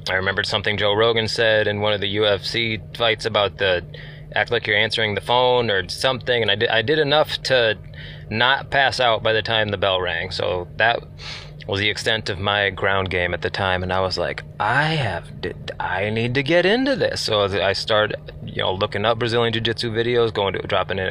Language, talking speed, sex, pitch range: English, 220 wpm, male, 100-120 Hz